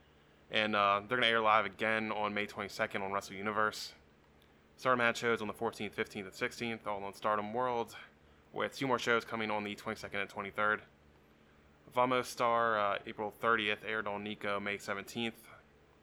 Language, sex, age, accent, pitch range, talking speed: English, male, 20-39, American, 100-110 Hz, 175 wpm